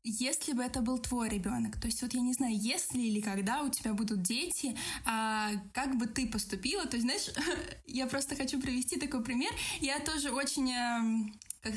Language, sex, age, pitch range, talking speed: Russian, female, 20-39, 225-275 Hz, 190 wpm